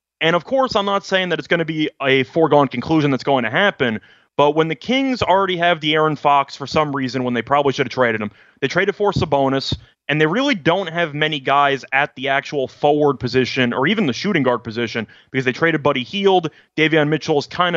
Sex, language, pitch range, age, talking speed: male, English, 130-170 Hz, 20-39, 230 wpm